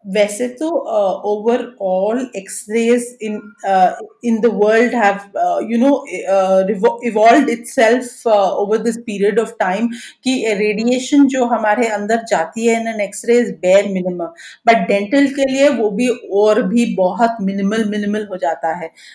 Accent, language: native, Hindi